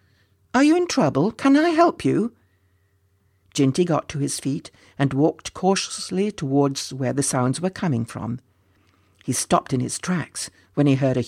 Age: 60-79